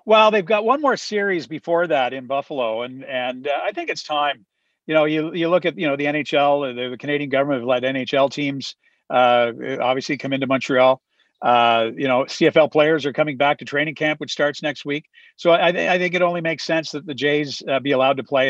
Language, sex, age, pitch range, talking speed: English, male, 50-69, 130-160 Hz, 230 wpm